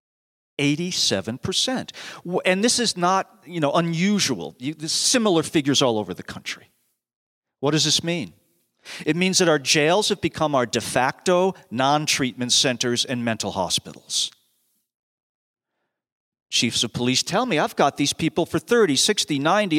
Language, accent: English, American